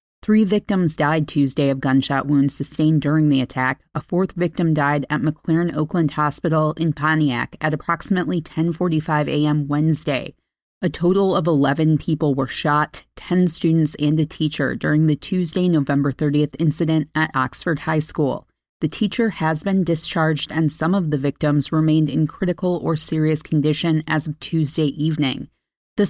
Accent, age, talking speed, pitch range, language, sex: American, 30-49, 160 wpm, 150-175 Hz, English, female